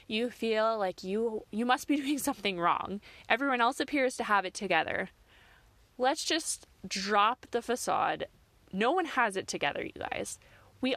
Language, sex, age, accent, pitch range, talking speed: English, female, 20-39, American, 175-235 Hz, 165 wpm